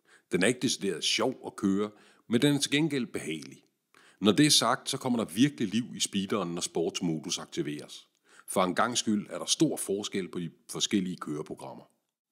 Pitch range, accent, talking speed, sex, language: 85-115 Hz, native, 190 wpm, male, Danish